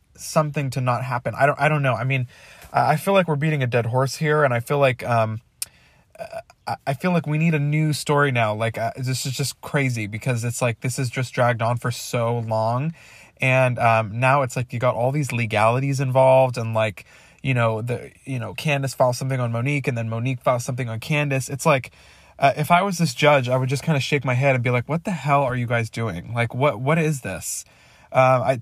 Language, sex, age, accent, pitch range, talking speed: English, male, 20-39, American, 120-145 Hz, 235 wpm